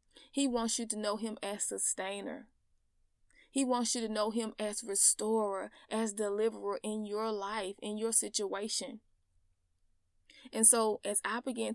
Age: 20-39